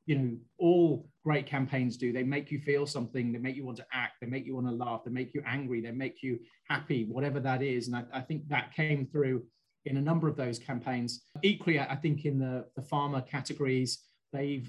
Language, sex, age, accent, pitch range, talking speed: English, male, 30-49, British, 125-150 Hz, 230 wpm